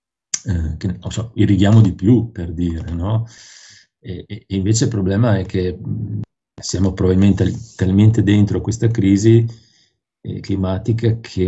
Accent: native